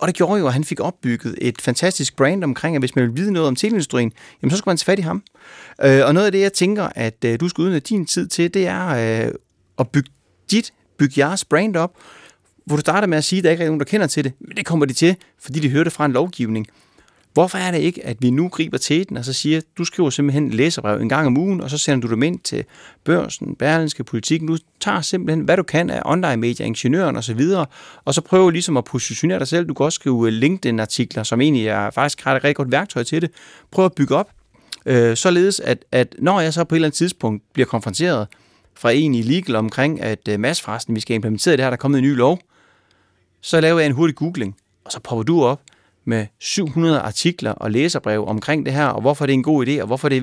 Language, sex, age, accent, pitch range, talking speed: Danish, male, 30-49, native, 120-165 Hz, 250 wpm